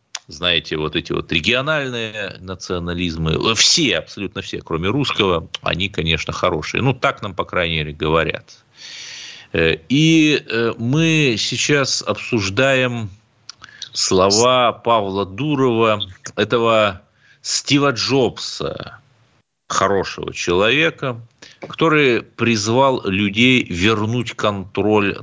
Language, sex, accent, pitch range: Russian, male, native, 95-130 Hz